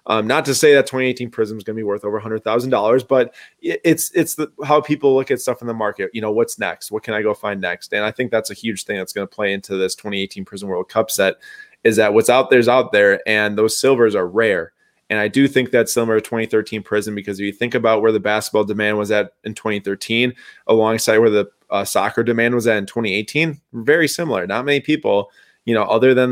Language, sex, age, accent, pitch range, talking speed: English, male, 20-39, American, 110-135 Hz, 250 wpm